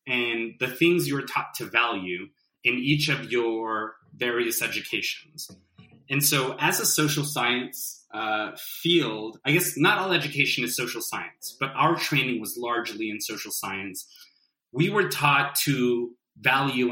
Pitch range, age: 120-150 Hz, 20-39